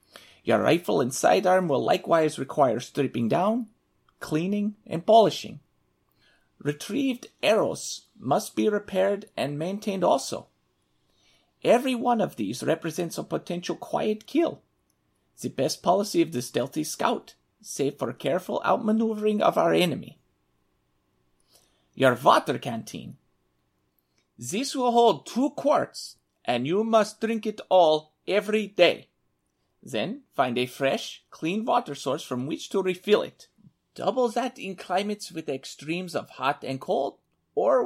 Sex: male